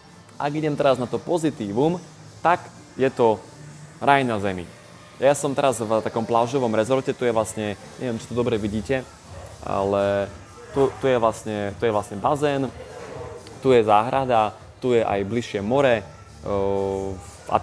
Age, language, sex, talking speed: 20-39, Slovak, male, 150 wpm